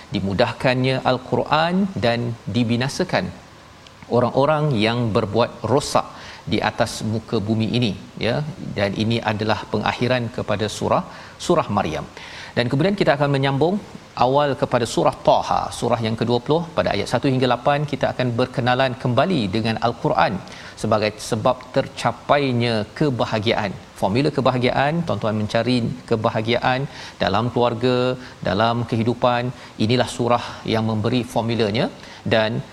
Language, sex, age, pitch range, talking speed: Malayalam, male, 40-59, 110-130 Hz, 115 wpm